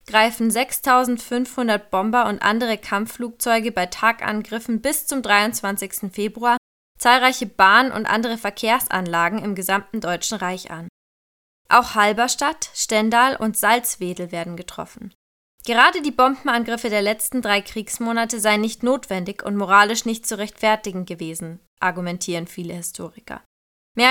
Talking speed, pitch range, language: 120 wpm, 195-240 Hz, German